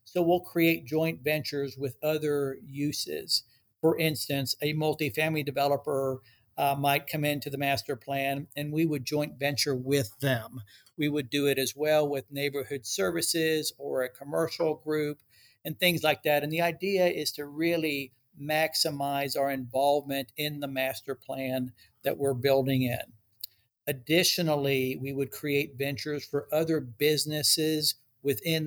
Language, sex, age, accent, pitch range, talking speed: English, male, 60-79, American, 135-155 Hz, 145 wpm